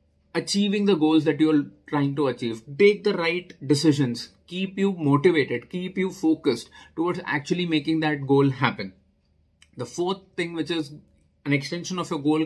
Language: English